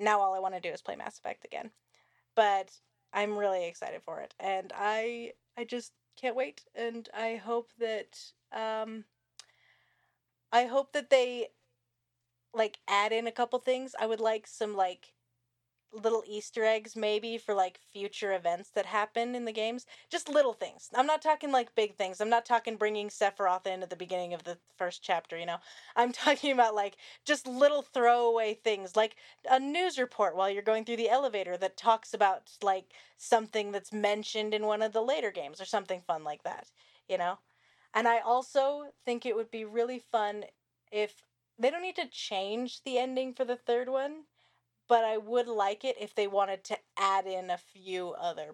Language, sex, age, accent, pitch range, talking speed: English, female, 20-39, American, 190-240 Hz, 190 wpm